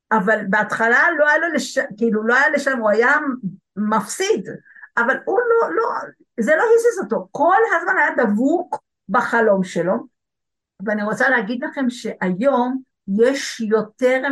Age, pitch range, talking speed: 50-69, 210-275 Hz, 140 wpm